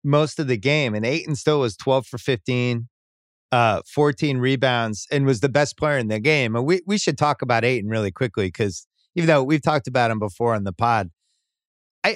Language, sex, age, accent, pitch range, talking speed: English, male, 30-49, American, 120-160 Hz, 210 wpm